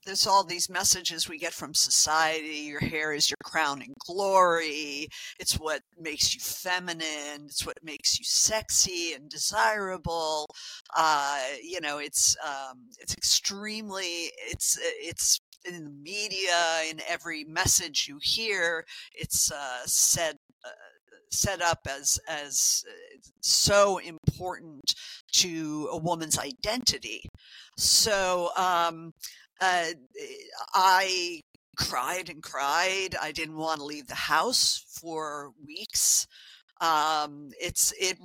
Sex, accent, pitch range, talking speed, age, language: female, American, 155-190 Hz, 120 wpm, 50-69, English